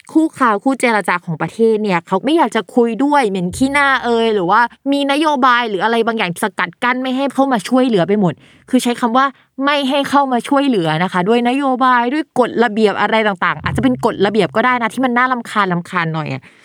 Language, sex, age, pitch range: Thai, female, 20-39, 190-255 Hz